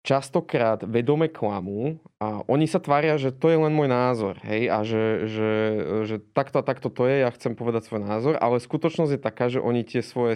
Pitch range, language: 115-145 Hz, Slovak